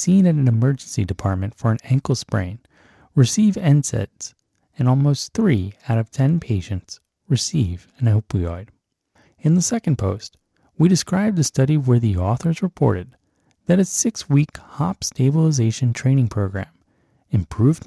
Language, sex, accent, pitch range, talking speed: English, male, American, 105-150 Hz, 140 wpm